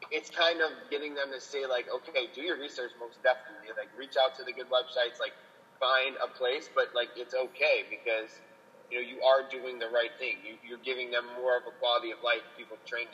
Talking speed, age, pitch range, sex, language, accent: 230 wpm, 20-39, 125-165 Hz, male, English, American